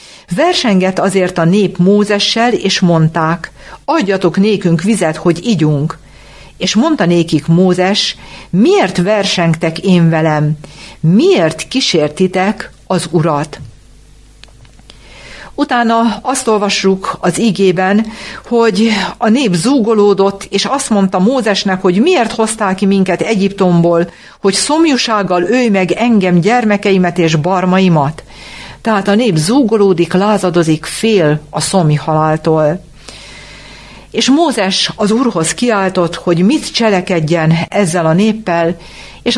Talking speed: 110 wpm